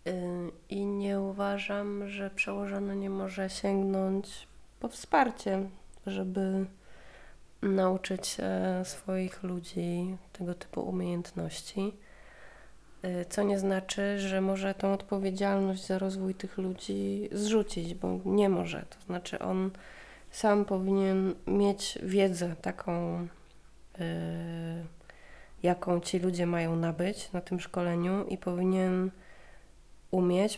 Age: 20-39